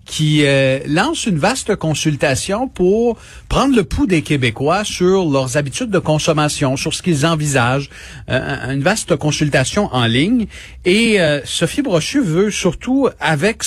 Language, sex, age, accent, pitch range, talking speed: French, male, 40-59, Canadian, 125-170 Hz, 150 wpm